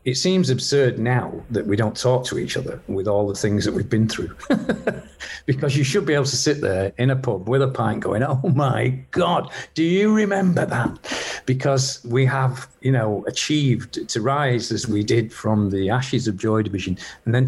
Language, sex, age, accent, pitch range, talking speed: English, male, 40-59, British, 110-135 Hz, 205 wpm